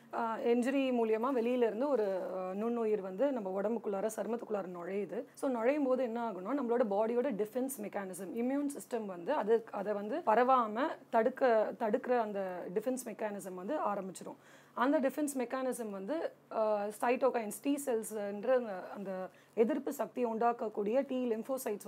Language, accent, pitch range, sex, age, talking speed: Tamil, native, 210-255 Hz, female, 30-49, 135 wpm